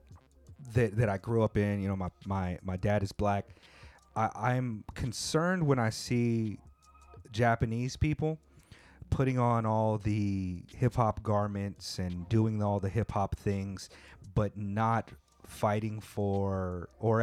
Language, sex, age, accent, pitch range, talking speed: English, male, 30-49, American, 100-120 Hz, 145 wpm